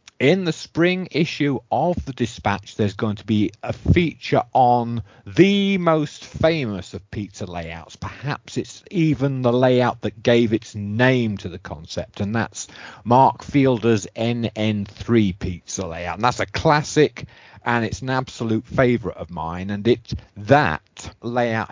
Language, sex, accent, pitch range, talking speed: English, male, British, 95-120 Hz, 150 wpm